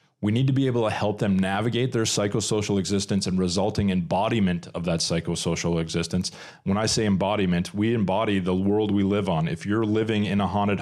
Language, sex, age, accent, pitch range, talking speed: English, male, 30-49, American, 95-110 Hz, 200 wpm